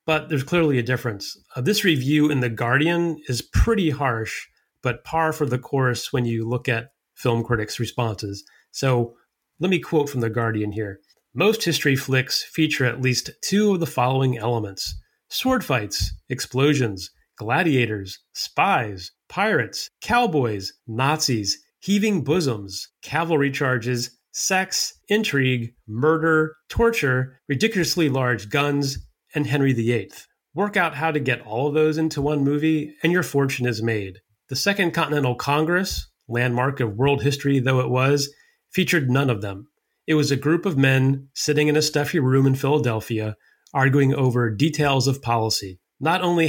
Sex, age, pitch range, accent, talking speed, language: male, 30-49, 120-155 Hz, American, 150 wpm, English